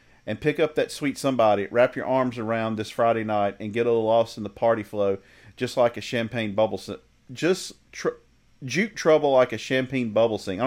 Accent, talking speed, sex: American, 215 wpm, male